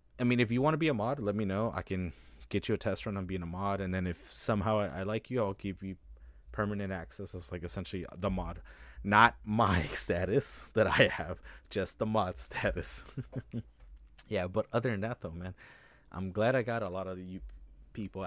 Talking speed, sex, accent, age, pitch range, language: 215 wpm, male, American, 20-39, 85-105 Hz, English